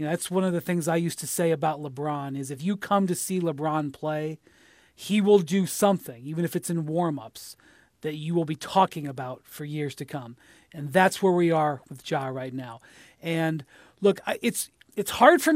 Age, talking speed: 40-59, 215 wpm